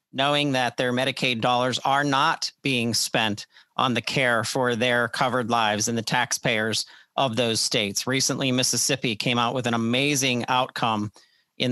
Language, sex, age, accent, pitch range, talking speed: English, male, 40-59, American, 115-135 Hz, 160 wpm